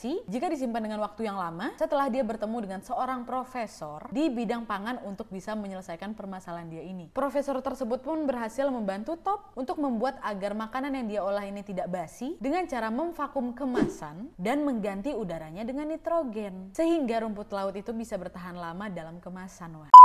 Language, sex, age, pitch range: Indonesian, female, 20-39, 195-275 Hz